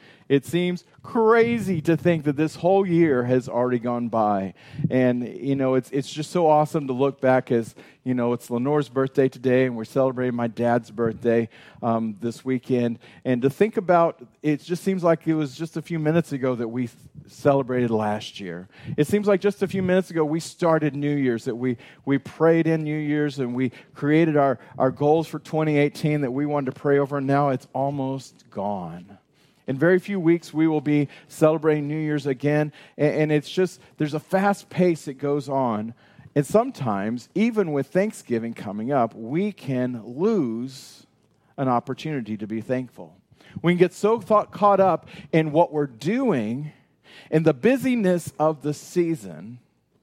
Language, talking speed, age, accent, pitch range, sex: English, 180 wpm, 40-59, American, 125-165 Hz, male